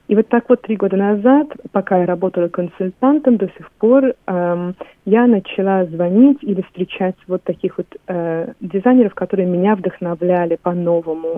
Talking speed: 155 wpm